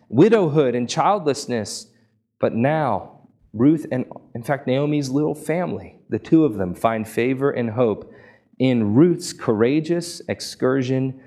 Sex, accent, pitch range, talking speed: male, American, 95-120 Hz, 130 wpm